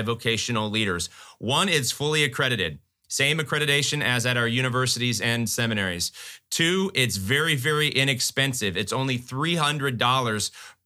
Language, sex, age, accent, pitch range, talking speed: English, male, 30-49, American, 115-145 Hz, 120 wpm